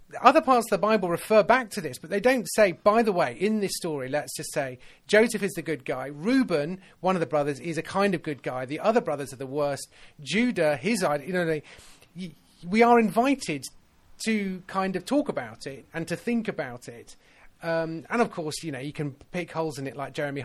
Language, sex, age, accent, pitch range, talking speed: English, male, 30-49, British, 145-190 Hz, 225 wpm